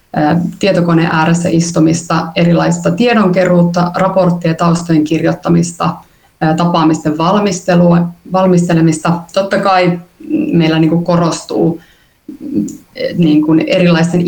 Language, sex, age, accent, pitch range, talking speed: Finnish, female, 30-49, native, 165-180 Hz, 65 wpm